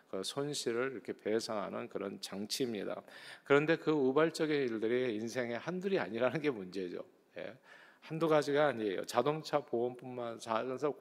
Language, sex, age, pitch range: Korean, male, 40-59, 120-165 Hz